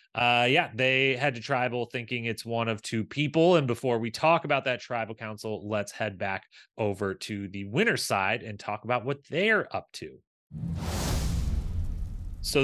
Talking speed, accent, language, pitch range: 170 wpm, American, English, 110-145 Hz